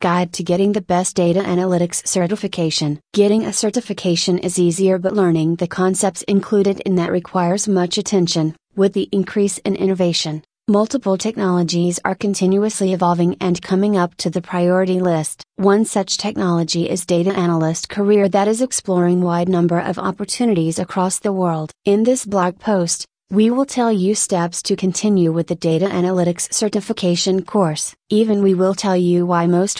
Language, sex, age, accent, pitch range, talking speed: English, female, 30-49, American, 175-200 Hz, 165 wpm